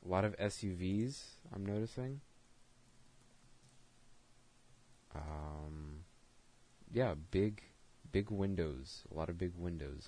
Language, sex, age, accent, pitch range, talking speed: English, male, 20-39, American, 85-120 Hz, 95 wpm